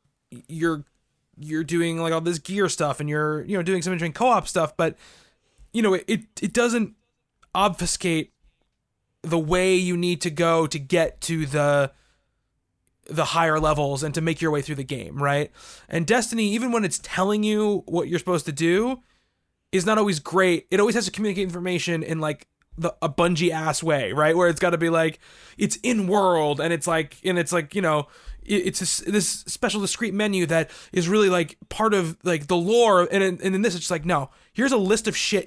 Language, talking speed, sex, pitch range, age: English, 205 wpm, male, 160-205 Hz, 20-39